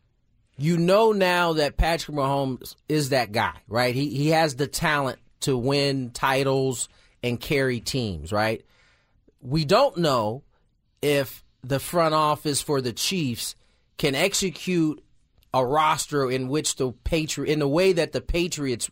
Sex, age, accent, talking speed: male, 30-49, American, 145 wpm